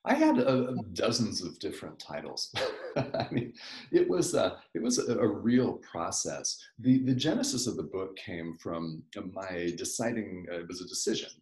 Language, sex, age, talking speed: English, male, 40-59, 175 wpm